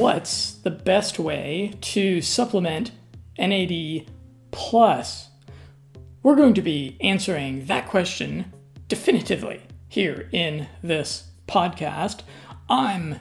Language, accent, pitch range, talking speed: English, American, 160-220 Hz, 95 wpm